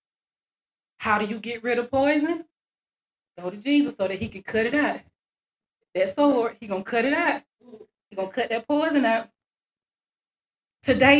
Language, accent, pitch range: English, American, 210-290 Hz